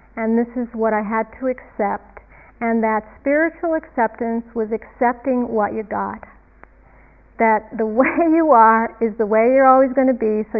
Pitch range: 220-270 Hz